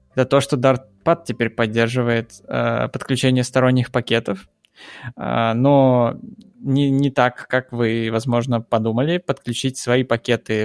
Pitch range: 115-135 Hz